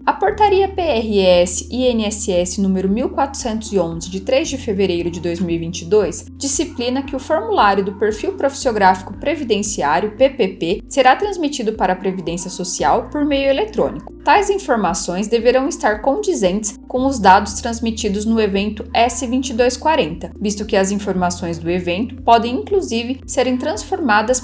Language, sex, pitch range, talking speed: Portuguese, female, 195-270 Hz, 130 wpm